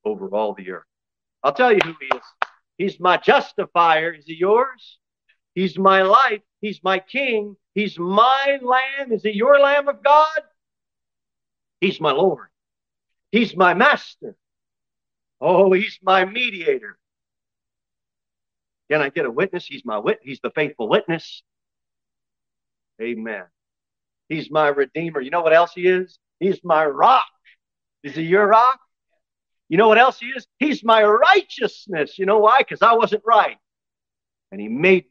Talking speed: 150 wpm